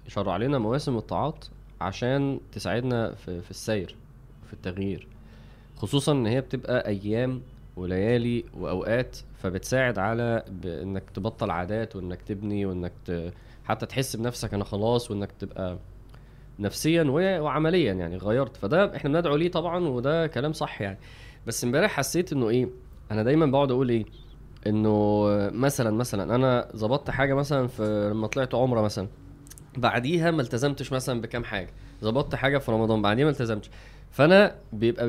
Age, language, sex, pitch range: 20-39, Arabic, male, 110-145 Hz